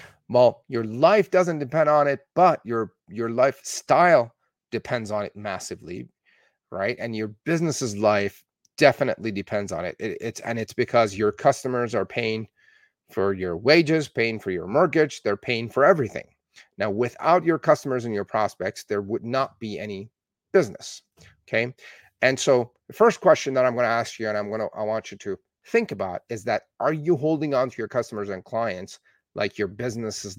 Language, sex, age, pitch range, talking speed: English, male, 40-59, 105-145 Hz, 180 wpm